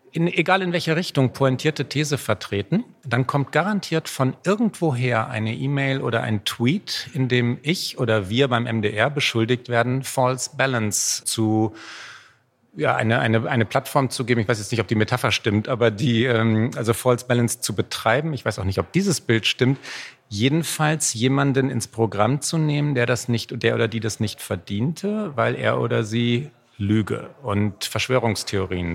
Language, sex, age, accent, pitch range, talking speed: German, male, 40-59, German, 115-150 Hz, 170 wpm